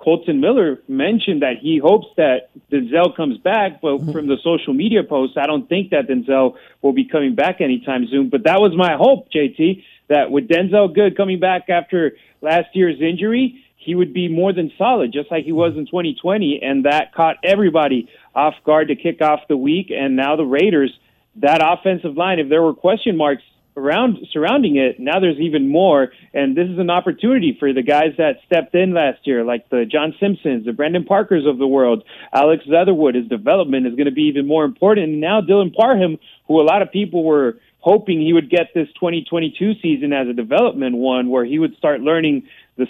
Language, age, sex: English, 30-49, male